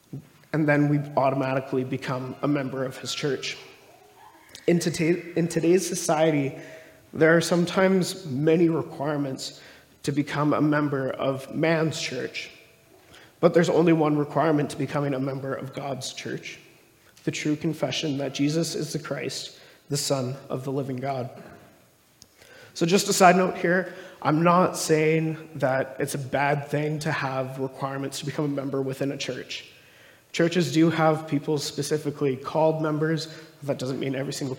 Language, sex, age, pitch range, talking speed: English, male, 30-49, 135-165 Hz, 150 wpm